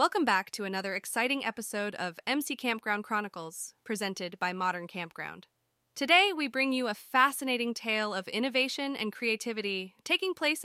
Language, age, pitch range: English, 20-39, 180-235 Hz